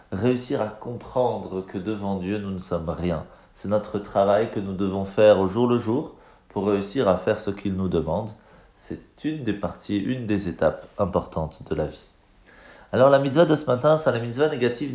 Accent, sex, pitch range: French, male, 100-125 Hz